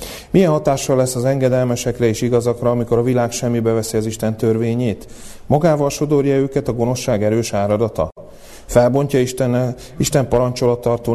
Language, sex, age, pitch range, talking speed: Hungarian, male, 30-49, 105-125 Hz, 140 wpm